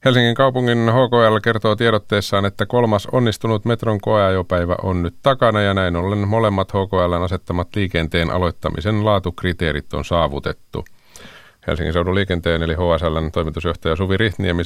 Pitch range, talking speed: 85-105 Hz, 130 wpm